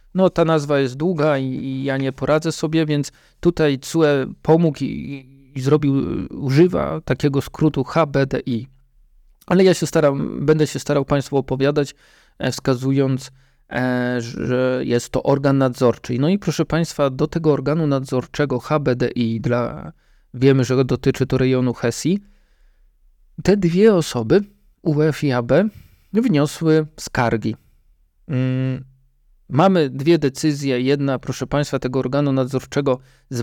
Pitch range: 130-155 Hz